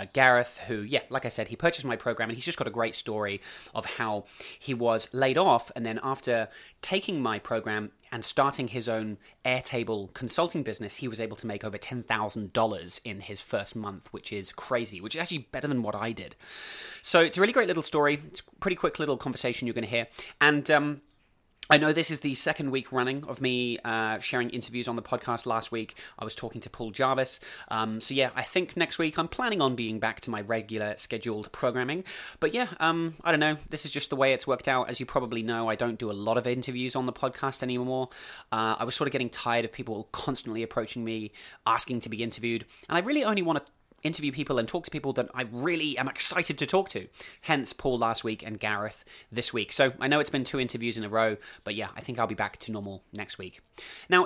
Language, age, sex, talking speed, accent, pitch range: English, 30-49, male, 235 wpm, British, 110-145 Hz